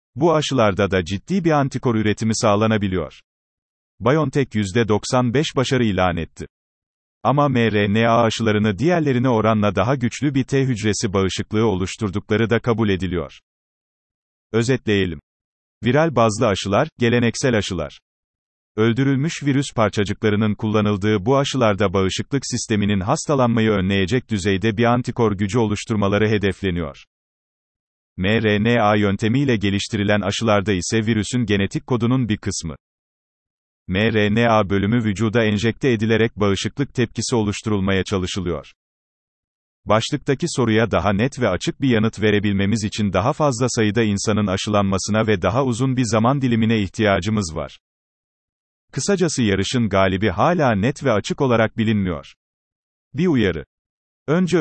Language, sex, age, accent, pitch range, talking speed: Turkish, male, 40-59, native, 100-125 Hz, 115 wpm